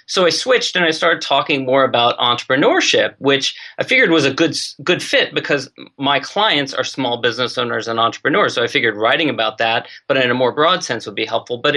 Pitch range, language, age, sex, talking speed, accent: 130-170 Hz, English, 30-49, male, 220 wpm, American